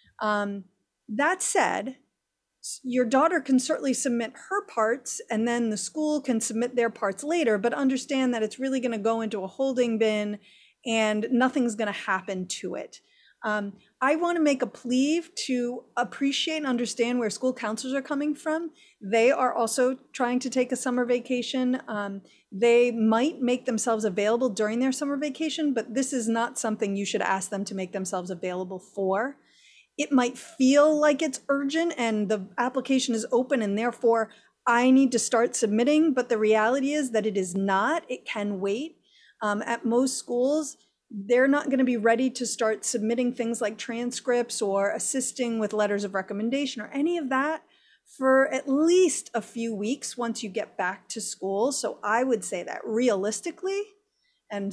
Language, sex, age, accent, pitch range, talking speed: English, female, 30-49, American, 220-270 Hz, 175 wpm